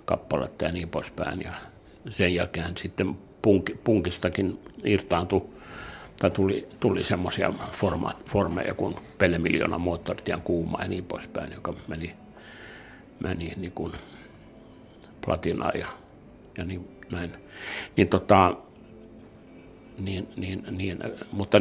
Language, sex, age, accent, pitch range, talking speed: Finnish, male, 60-79, native, 90-105 Hz, 110 wpm